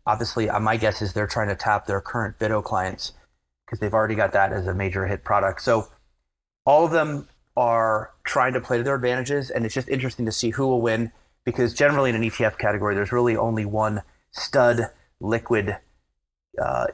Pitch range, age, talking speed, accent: 100-120 Hz, 30-49, 195 wpm, American